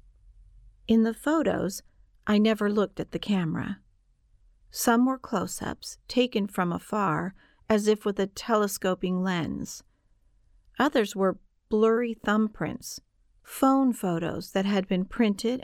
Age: 50-69